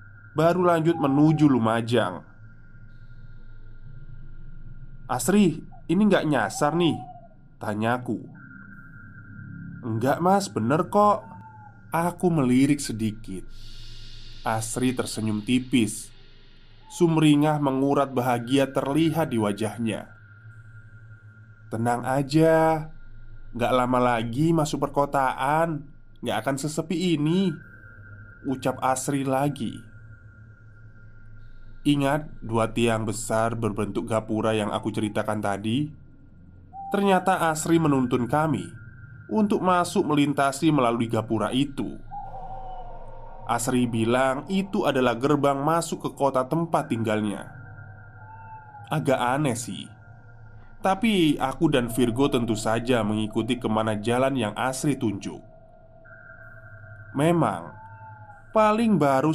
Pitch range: 110-145 Hz